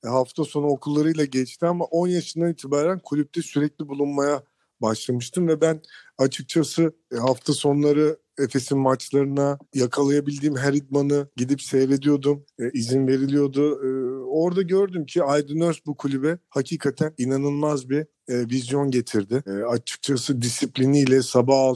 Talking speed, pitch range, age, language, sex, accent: 125 wpm, 130-155 Hz, 50-69, Turkish, male, native